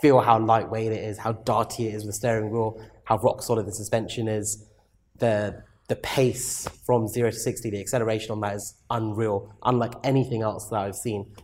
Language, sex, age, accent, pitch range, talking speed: English, male, 20-39, British, 105-130 Hz, 200 wpm